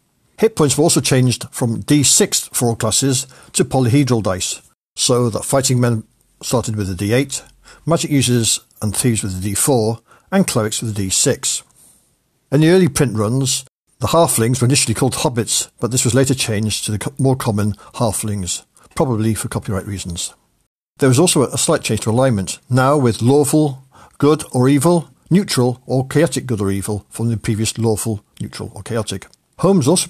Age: 60-79